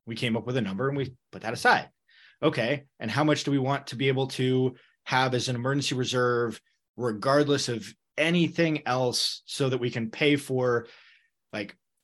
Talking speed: 190 wpm